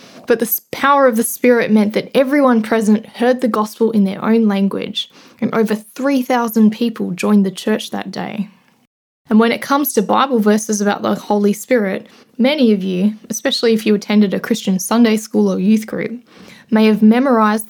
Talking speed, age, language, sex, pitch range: 185 wpm, 10-29, English, female, 205-240 Hz